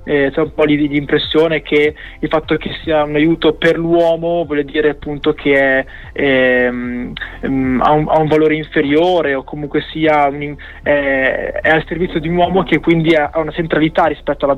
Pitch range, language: 150-180 Hz, Italian